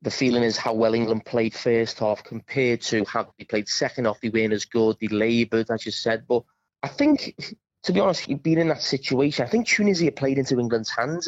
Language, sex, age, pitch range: English, male, 30-49, 115-140 Hz